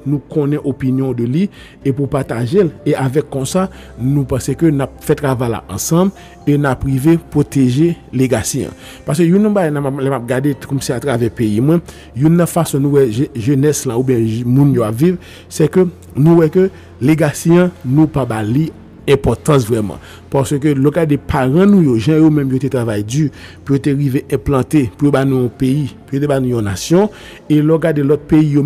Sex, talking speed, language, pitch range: male, 205 wpm, French, 135-155 Hz